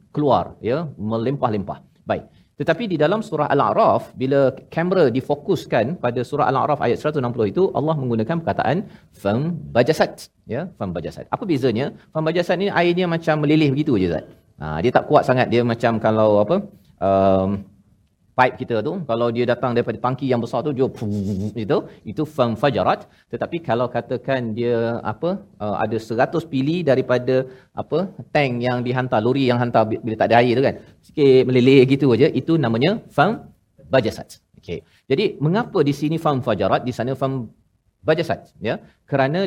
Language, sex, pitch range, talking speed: Malayalam, male, 120-155 Hz, 160 wpm